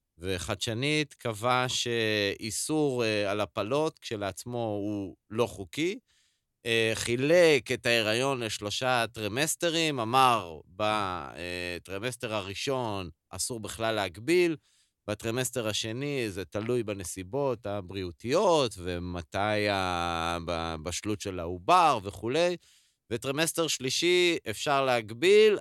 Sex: male